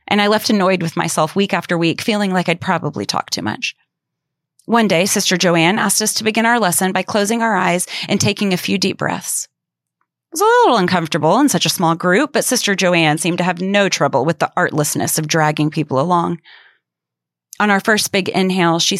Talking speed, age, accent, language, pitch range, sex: 210 wpm, 30-49, American, English, 165-195 Hz, female